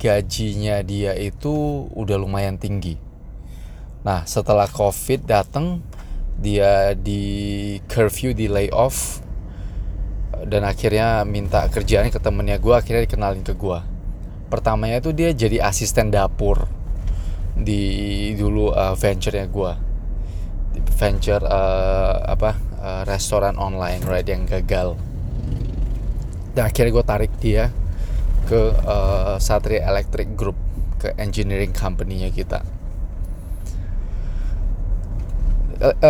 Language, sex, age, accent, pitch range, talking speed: Indonesian, male, 20-39, native, 90-115 Hz, 105 wpm